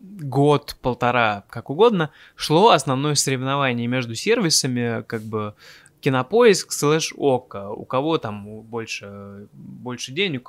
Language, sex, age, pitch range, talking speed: Russian, male, 20-39, 115-145 Hz, 105 wpm